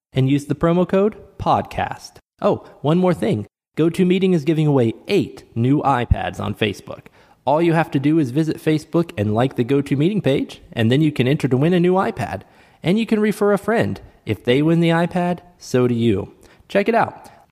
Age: 20-39